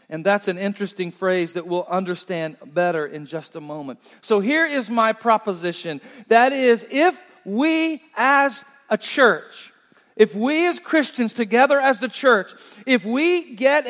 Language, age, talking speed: English, 40-59, 155 wpm